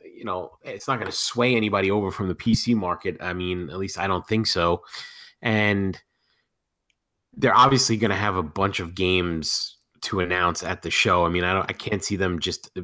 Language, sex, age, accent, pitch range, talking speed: English, male, 30-49, American, 90-105 Hz, 210 wpm